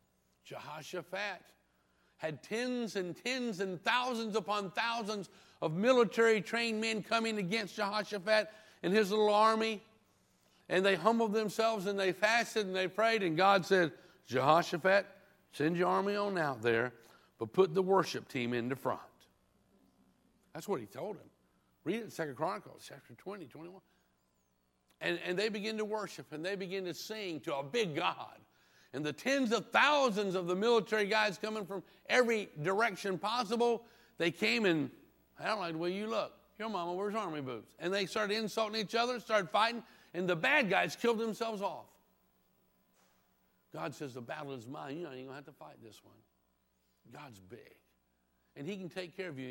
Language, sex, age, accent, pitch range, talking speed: English, male, 60-79, American, 140-215 Hz, 175 wpm